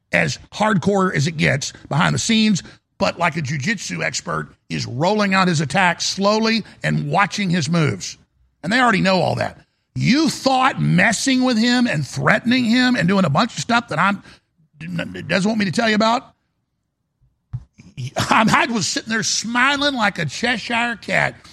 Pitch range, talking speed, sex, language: 165-225 Hz, 170 wpm, male, English